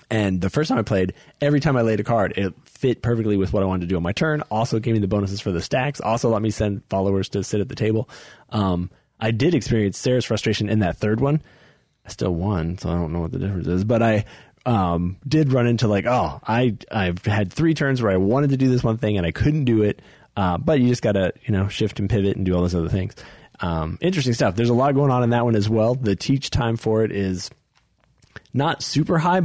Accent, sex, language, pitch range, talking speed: American, male, English, 95-125 Hz, 265 wpm